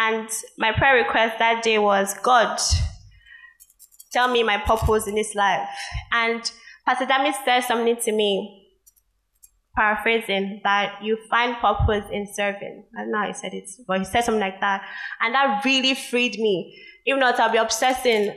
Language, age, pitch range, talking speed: English, 20-39, 205-250 Hz, 165 wpm